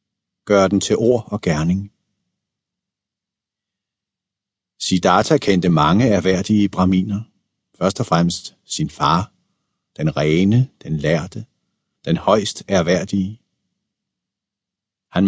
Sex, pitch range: male, 95-120 Hz